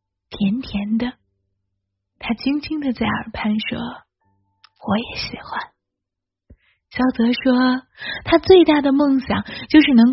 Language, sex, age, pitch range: Chinese, female, 30-49, 205-290 Hz